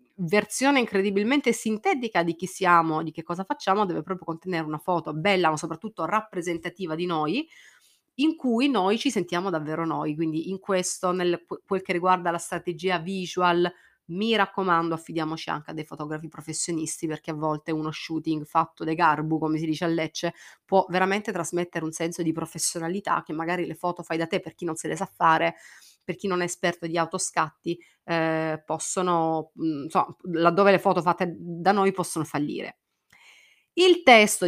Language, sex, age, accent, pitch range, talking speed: Italian, female, 30-49, native, 165-205 Hz, 175 wpm